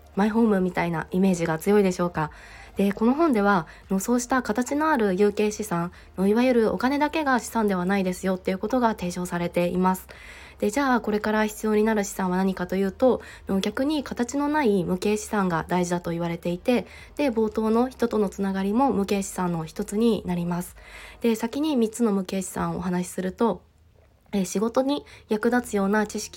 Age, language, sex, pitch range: 20-39, Japanese, female, 180-225 Hz